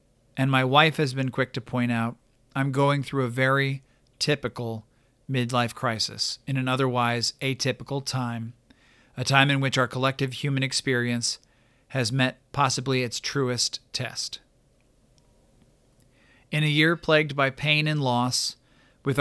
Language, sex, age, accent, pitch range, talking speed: English, male, 40-59, American, 120-135 Hz, 140 wpm